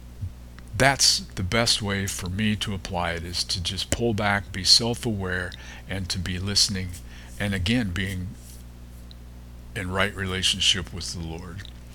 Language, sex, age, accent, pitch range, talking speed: English, male, 50-69, American, 85-115 Hz, 145 wpm